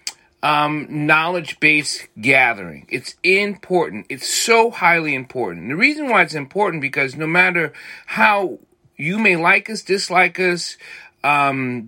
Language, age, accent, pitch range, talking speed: English, 40-59, American, 135-190 Hz, 125 wpm